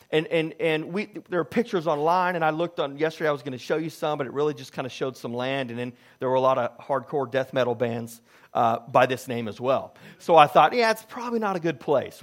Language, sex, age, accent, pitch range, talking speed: English, male, 40-59, American, 135-175 Hz, 275 wpm